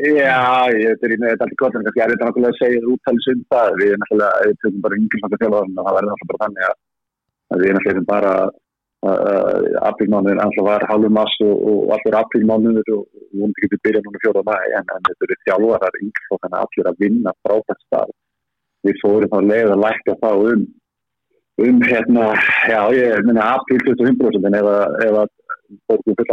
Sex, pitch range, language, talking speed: male, 105-130 Hz, English, 130 wpm